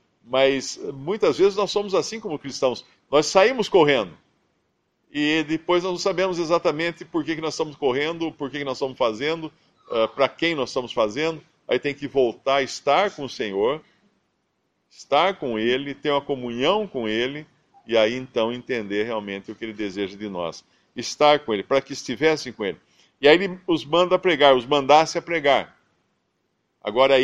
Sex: male